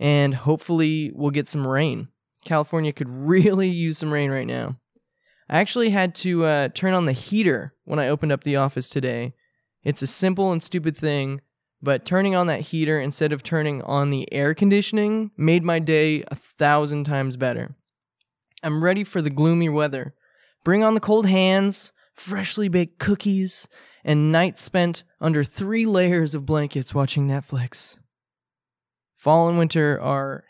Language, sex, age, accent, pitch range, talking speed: English, male, 20-39, American, 140-185 Hz, 165 wpm